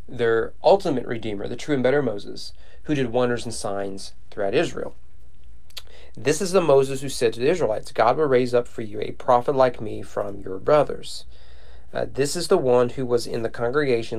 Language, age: English, 40-59